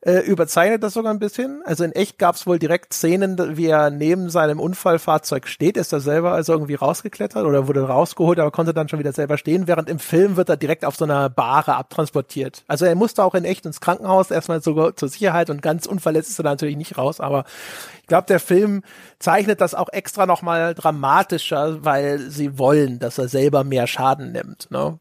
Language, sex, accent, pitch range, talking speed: German, male, German, 150-190 Hz, 215 wpm